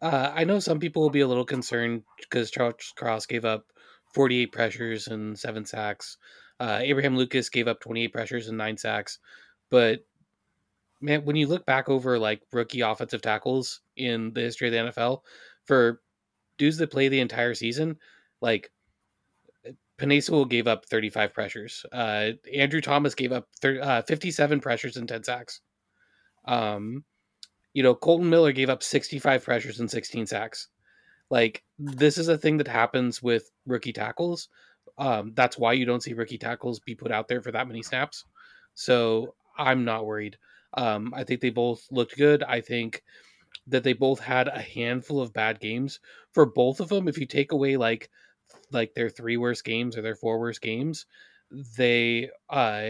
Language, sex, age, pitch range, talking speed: English, male, 20-39, 115-140 Hz, 175 wpm